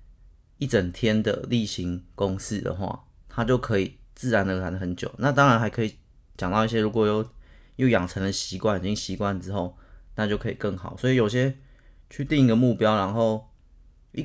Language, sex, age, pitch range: Chinese, male, 20-39, 95-125 Hz